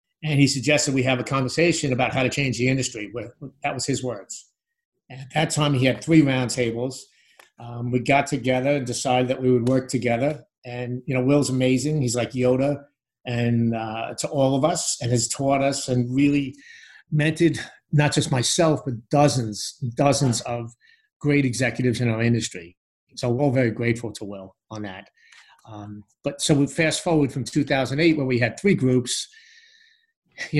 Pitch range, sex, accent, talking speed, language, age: 120-145 Hz, male, American, 180 wpm, English, 50-69